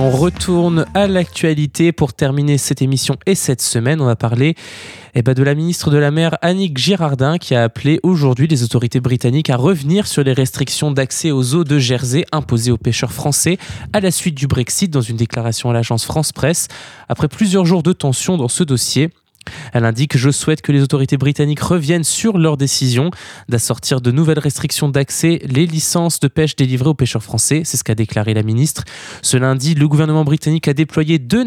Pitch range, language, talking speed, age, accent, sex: 130-165 Hz, French, 200 wpm, 20-39, French, male